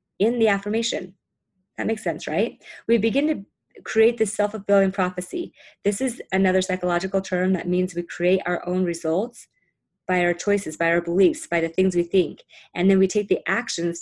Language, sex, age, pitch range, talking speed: English, female, 30-49, 175-205 Hz, 185 wpm